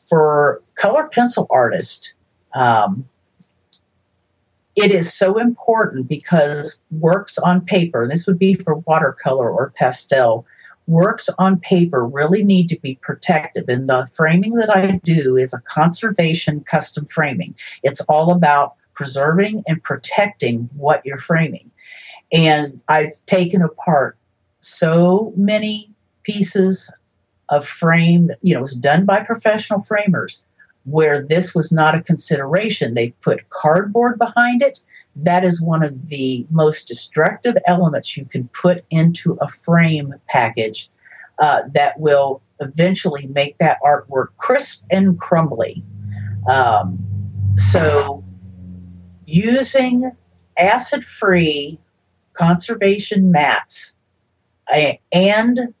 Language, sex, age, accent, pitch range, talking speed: English, female, 50-69, American, 140-190 Hz, 120 wpm